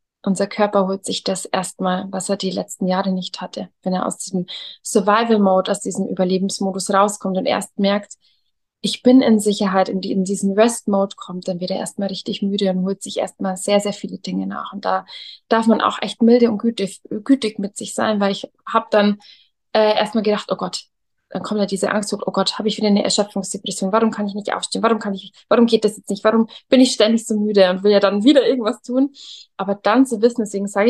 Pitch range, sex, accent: 195-225 Hz, female, German